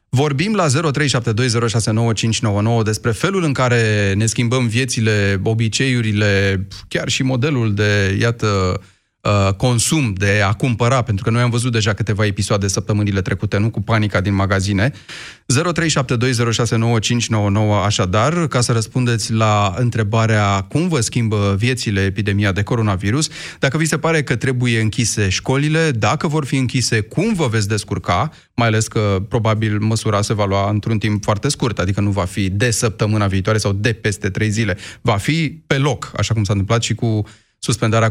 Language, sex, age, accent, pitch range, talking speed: Romanian, male, 30-49, native, 105-130 Hz, 155 wpm